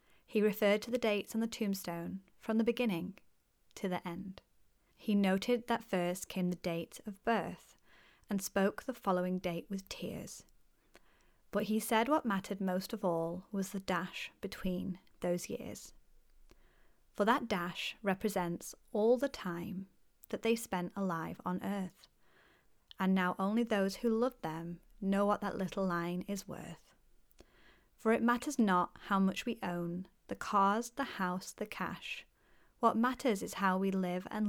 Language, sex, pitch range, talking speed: English, female, 180-225 Hz, 160 wpm